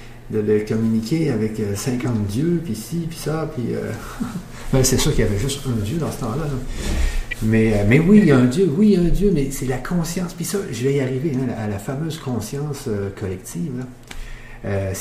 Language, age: French, 50-69